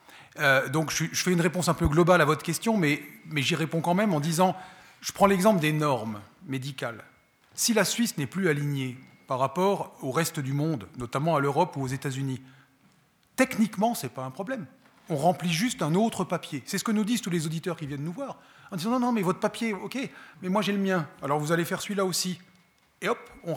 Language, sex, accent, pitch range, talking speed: French, male, French, 130-180 Hz, 225 wpm